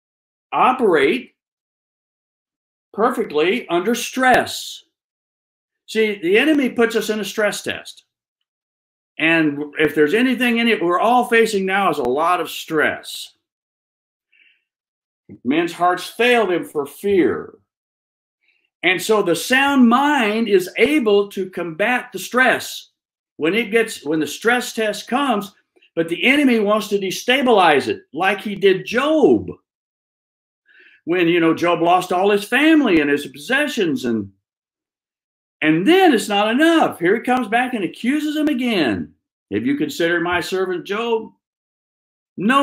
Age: 50-69